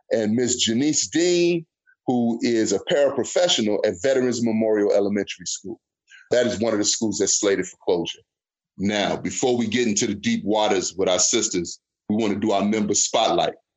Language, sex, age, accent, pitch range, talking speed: English, male, 30-49, American, 105-130 Hz, 180 wpm